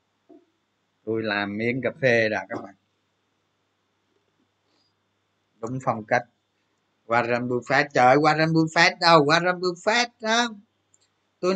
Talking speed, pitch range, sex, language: 115 wpm, 115-170 Hz, male, Vietnamese